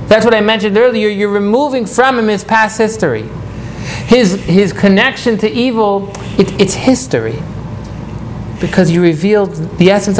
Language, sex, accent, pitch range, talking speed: English, male, American, 165-215 Hz, 145 wpm